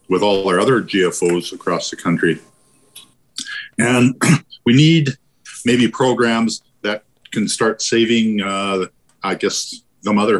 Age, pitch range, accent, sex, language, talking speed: 50-69, 95-120 Hz, American, male, English, 125 wpm